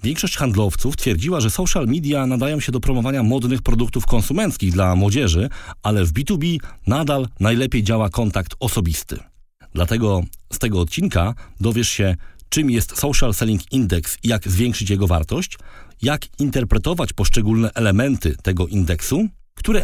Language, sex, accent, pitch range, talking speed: Polish, male, native, 90-130 Hz, 140 wpm